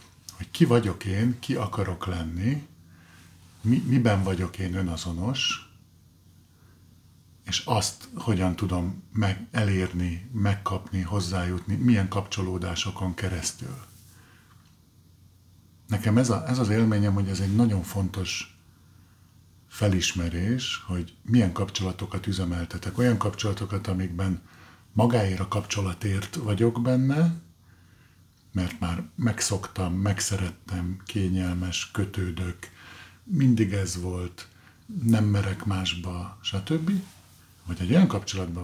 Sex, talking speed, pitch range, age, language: male, 100 wpm, 90-110 Hz, 50-69, Hungarian